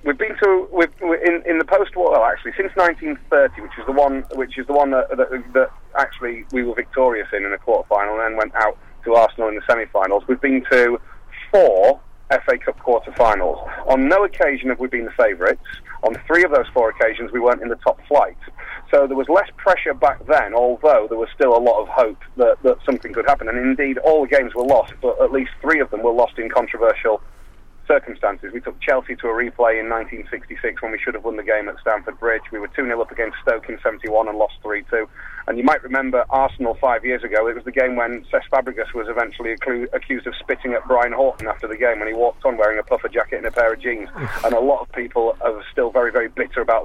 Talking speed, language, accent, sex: 235 wpm, English, British, male